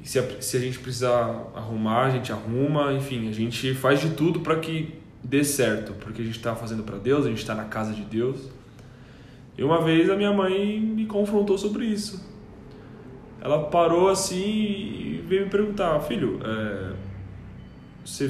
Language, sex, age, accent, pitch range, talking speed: Portuguese, male, 10-29, Brazilian, 120-155 Hz, 170 wpm